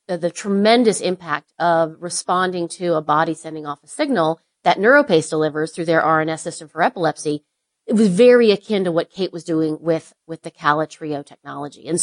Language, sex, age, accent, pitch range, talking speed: English, female, 30-49, American, 165-205 Hz, 190 wpm